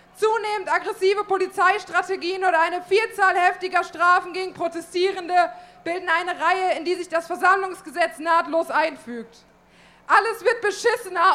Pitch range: 345-415 Hz